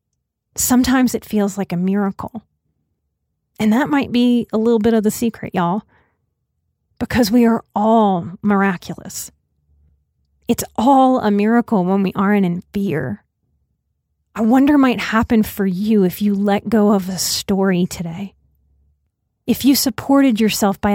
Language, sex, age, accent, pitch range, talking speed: English, female, 30-49, American, 180-225 Hz, 145 wpm